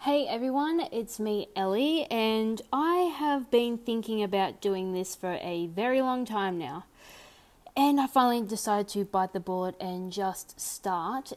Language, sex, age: English, female, 20-39